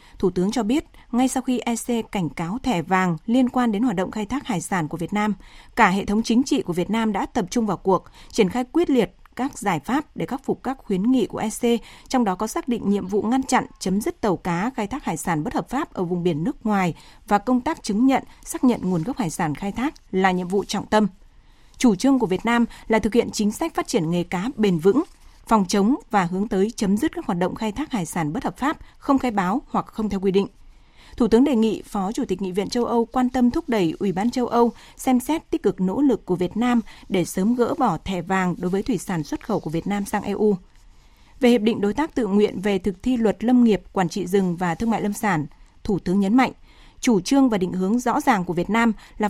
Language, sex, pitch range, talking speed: Vietnamese, female, 190-250 Hz, 265 wpm